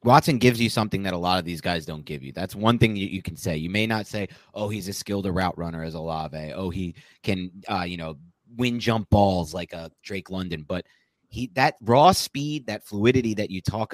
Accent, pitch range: American, 90-125 Hz